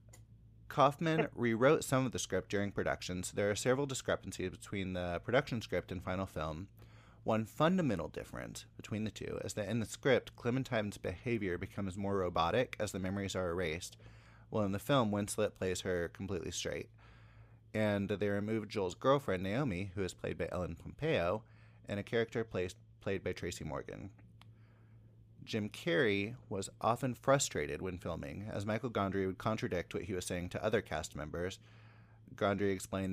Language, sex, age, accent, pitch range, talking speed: English, male, 30-49, American, 95-115 Hz, 165 wpm